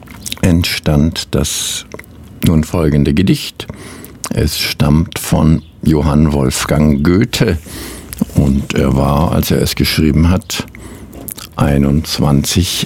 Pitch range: 75-90 Hz